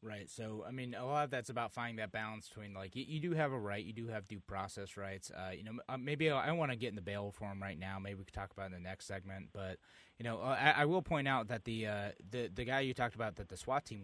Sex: male